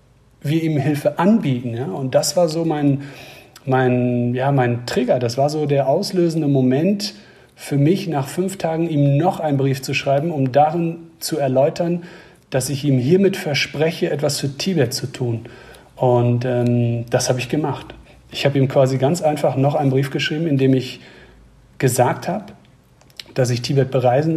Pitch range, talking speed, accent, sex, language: 130-155 Hz, 165 wpm, German, male, German